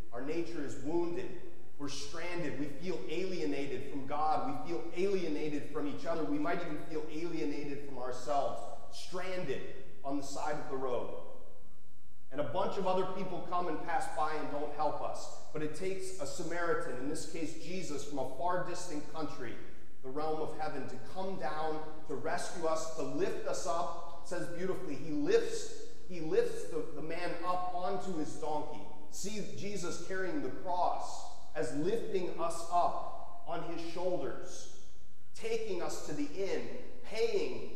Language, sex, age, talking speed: English, male, 30-49, 165 wpm